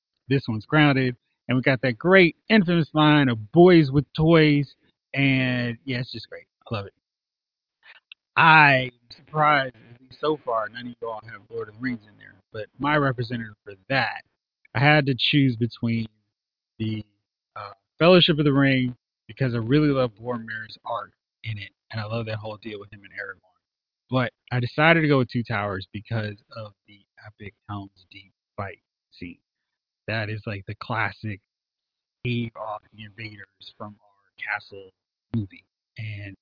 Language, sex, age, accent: English, male, 30-49, American